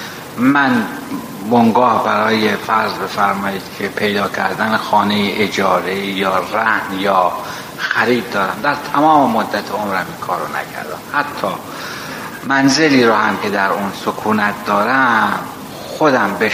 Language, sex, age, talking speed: Persian, male, 60-79, 120 wpm